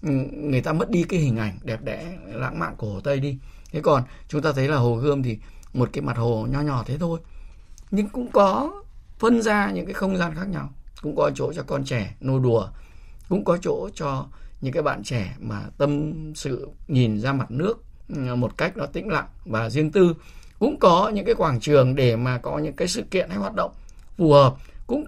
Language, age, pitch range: Vietnamese, 20-39, 125-175 Hz